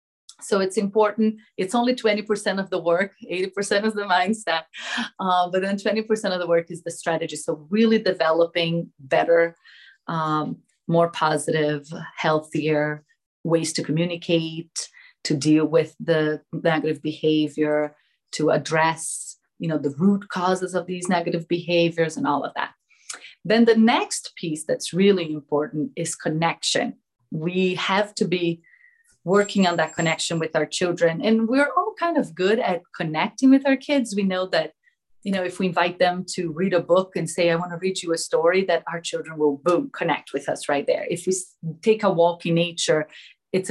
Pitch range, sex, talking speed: 165-200 Hz, female, 170 wpm